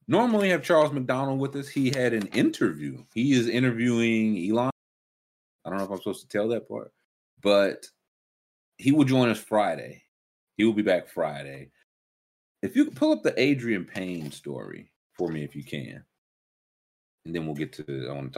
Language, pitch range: English, 75-130 Hz